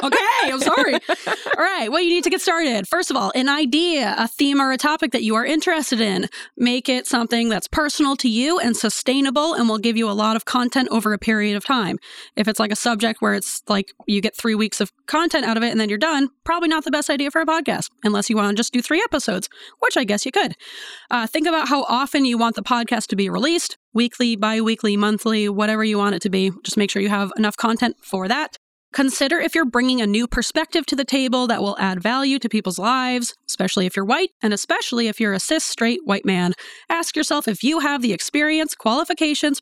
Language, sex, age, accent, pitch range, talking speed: English, female, 20-39, American, 215-290 Hz, 240 wpm